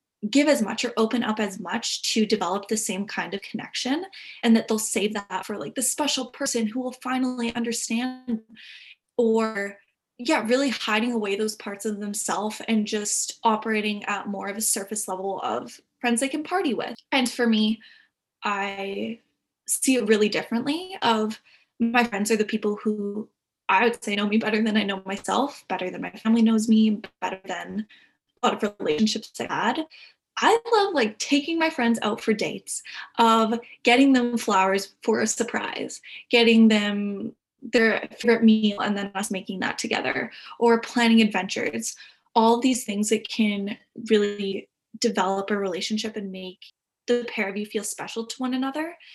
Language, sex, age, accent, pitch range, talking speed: English, female, 10-29, American, 205-240 Hz, 170 wpm